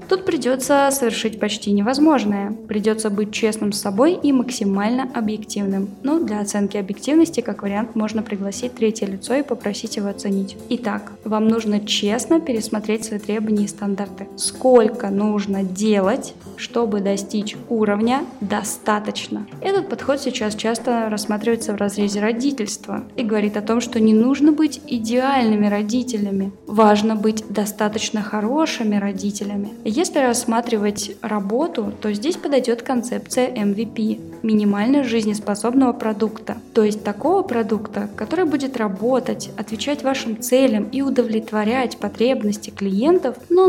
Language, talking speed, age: Russian, 125 wpm, 10-29